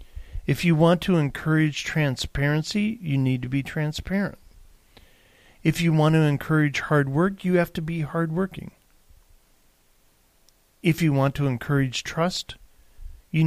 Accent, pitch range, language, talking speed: American, 110-160 Hz, English, 135 wpm